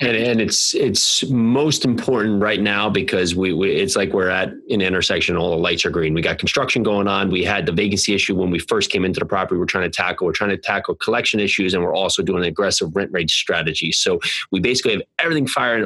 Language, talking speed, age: English, 240 wpm, 30-49